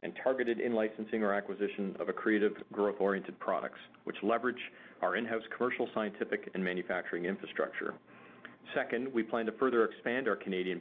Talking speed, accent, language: 155 wpm, American, English